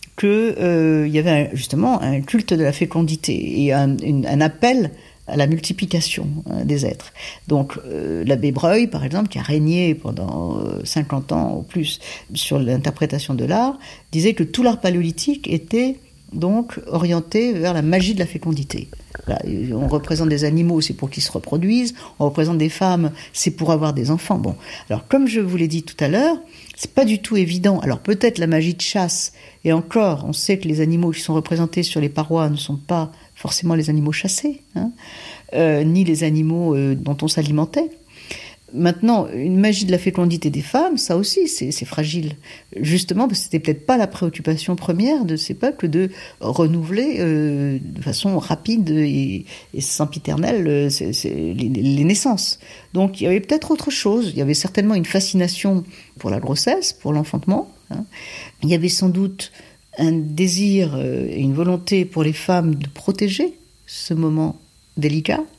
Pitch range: 150-195 Hz